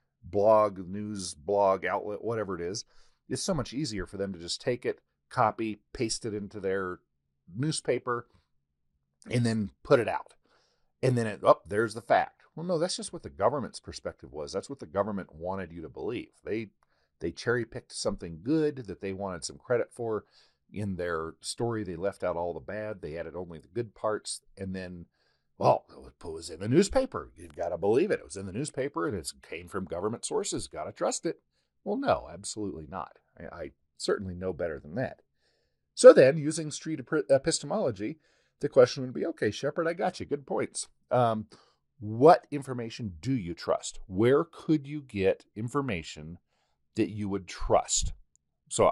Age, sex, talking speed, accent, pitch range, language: 40-59, male, 185 wpm, American, 90-130 Hz, English